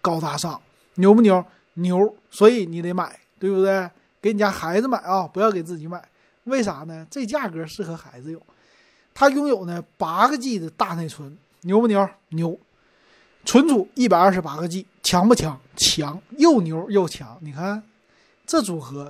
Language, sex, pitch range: Chinese, male, 165-225 Hz